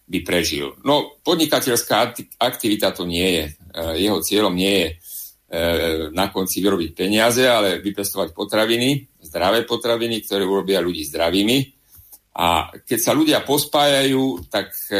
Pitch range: 90-110 Hz